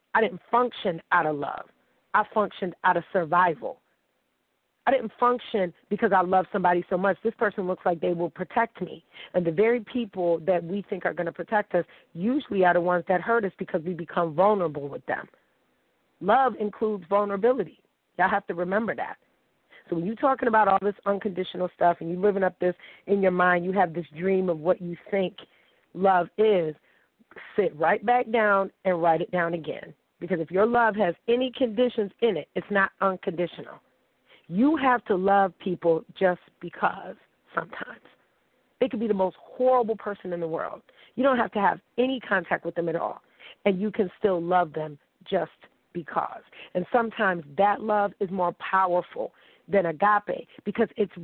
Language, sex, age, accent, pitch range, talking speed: English, female, 40-59, American, 175-215 Hz, 185 wpm